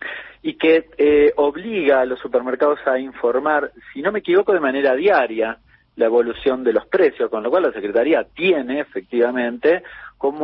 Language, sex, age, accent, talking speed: Spanish, male, 40-59, Argentinian, 165 wpm